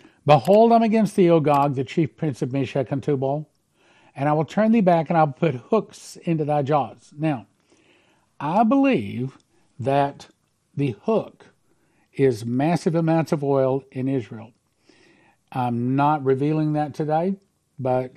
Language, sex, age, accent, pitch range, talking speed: English, male, 50-69, American, 125-160 Hz, 150 wpm